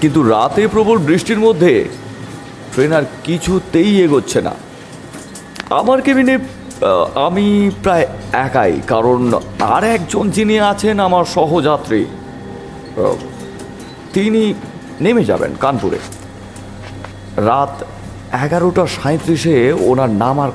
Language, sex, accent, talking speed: Bengali, male, native, 90 wpm